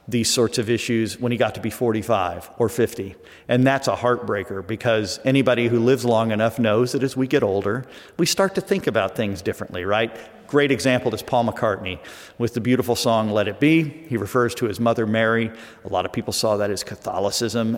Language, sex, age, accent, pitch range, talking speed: English, male, 50-69, American, 105-130 Hz, 210 wpm